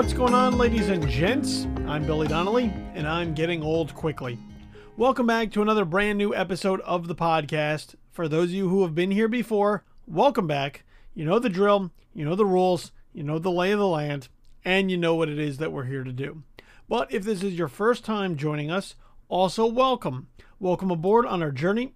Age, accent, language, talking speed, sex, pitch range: 40-59, American, English, 210 wpm, male, 155-210 Hz